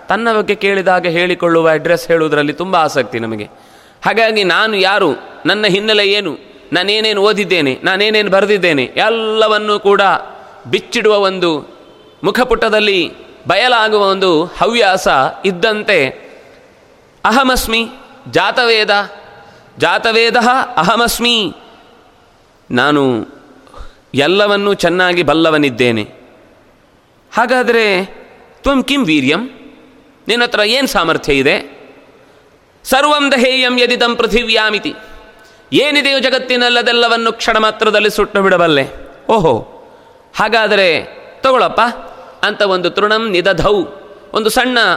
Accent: native